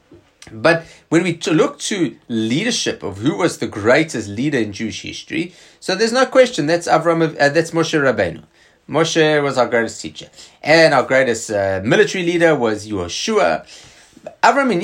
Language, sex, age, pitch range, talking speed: English, male, 30-49, 125-180 Hz, 165 wpm